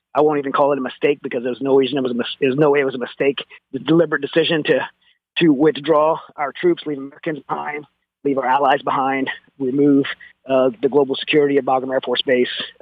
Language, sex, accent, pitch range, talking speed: English, male, American, 130-150 Hz, 200 wpm